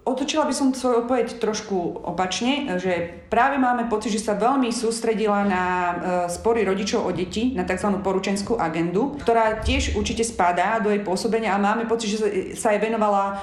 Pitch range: 185-220 Hz